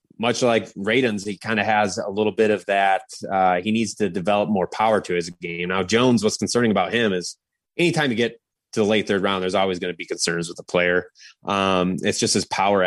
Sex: male